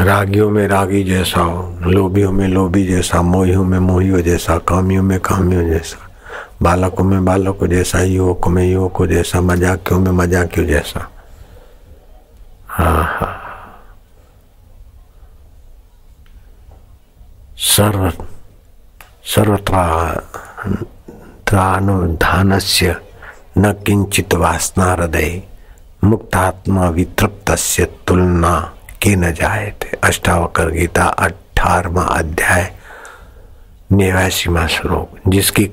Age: 60-79